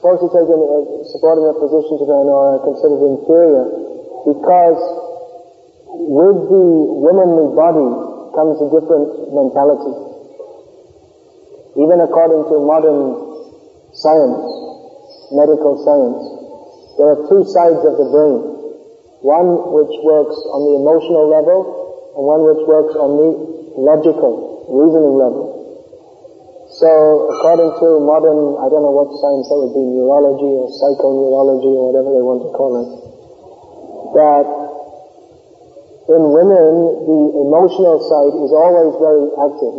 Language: English